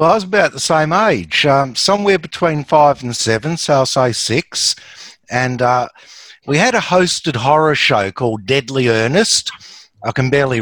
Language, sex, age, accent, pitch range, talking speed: English, male, 60-79, Australian, 115-155 Hz, 175 wpm